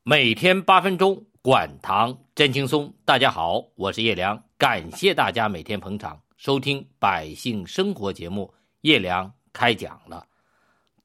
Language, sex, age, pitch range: Chinese, male, 50-69, 105-145 Hz